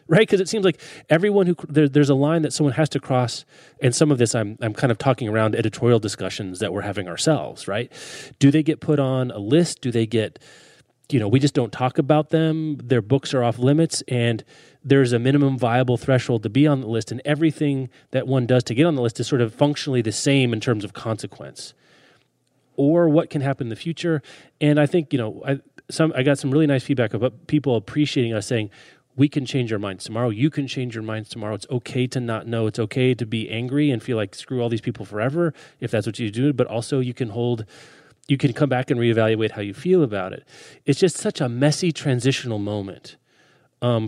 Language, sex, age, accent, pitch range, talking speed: English, male, 30-49, American, 115-145 Hz, 230 wpm